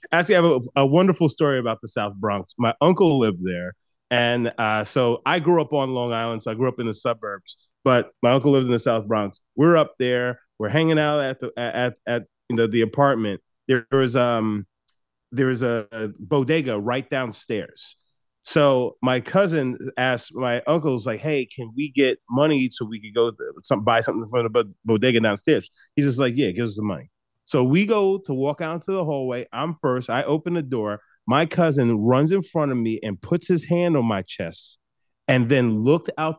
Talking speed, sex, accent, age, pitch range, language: 215 wpm, male, American, 30-49, 115-155 Hz, English